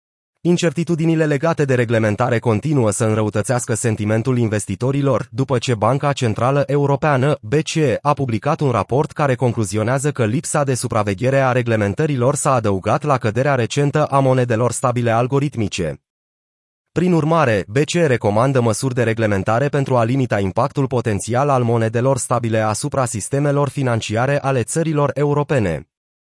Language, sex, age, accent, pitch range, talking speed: Romanian, male, 30-49, native, 115-145 Hz, 130 wpm